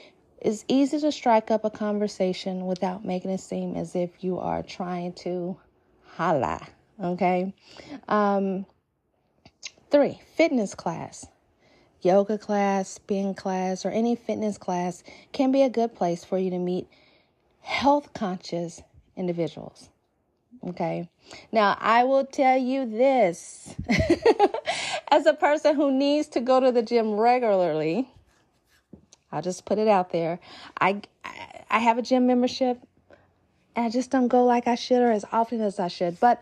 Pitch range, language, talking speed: 195-275 Hz, English, 145 wpm